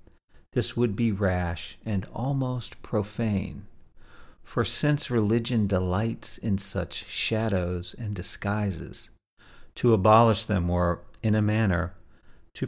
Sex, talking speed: male, 115 wpm